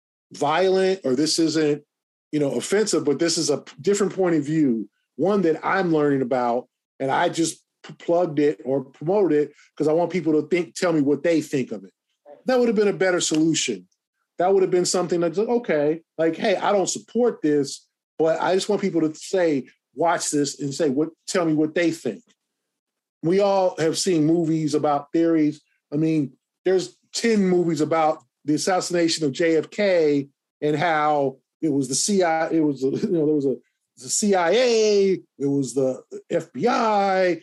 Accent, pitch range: American, 150-195 Hz